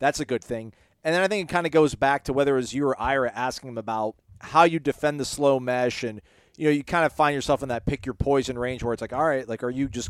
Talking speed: 295 wpm